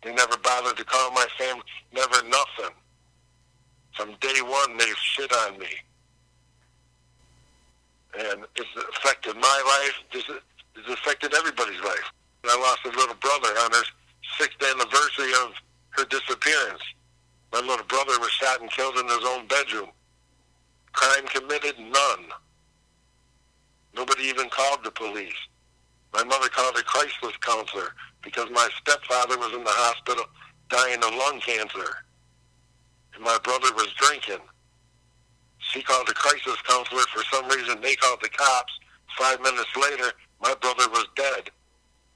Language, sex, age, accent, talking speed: English, male, 60-79, American, 140 wpm